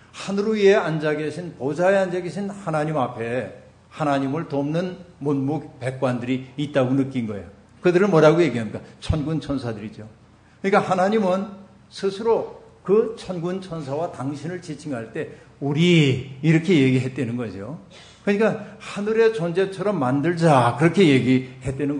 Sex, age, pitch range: male, 60-79, 130-175 Hz